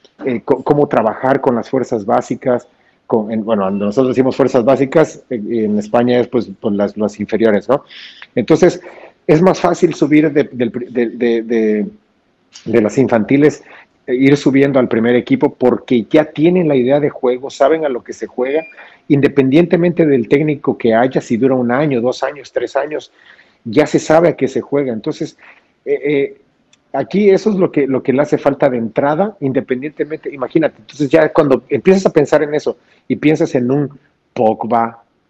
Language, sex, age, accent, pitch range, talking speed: Spanish, male, 40-59, Mexican, 115-150 Hz, 180 wpm